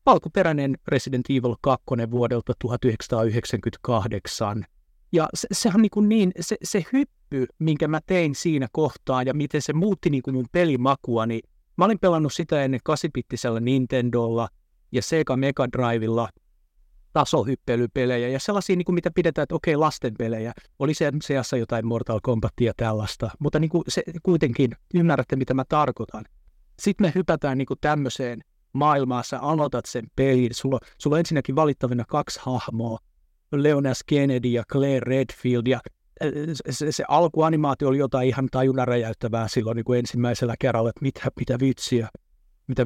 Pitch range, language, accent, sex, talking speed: 120-155 Hz, Finnish, native, male, 150 wpm